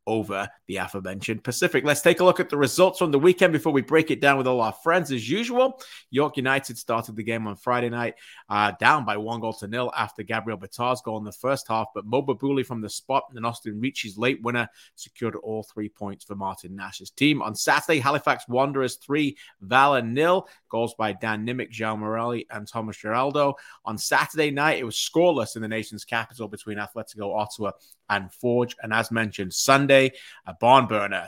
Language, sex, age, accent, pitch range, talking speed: English, male, 30-49, British, 105-140 Hz, 200 wpm